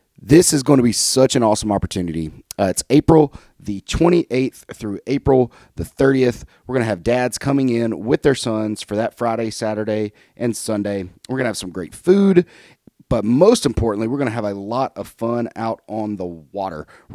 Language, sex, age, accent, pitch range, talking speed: English, male, 30-49, American, 105-130 Hz, 200 wpm